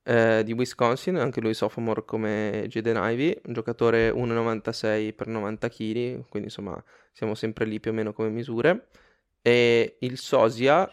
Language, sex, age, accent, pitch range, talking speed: Italian, male, 20-39, native, 110-125 Hz, 155 wpm